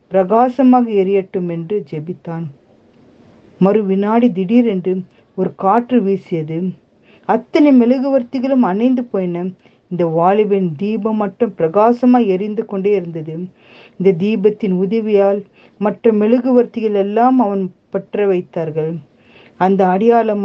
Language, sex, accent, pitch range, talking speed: Tamil, female, native, 185-240 Hz, 80 wpm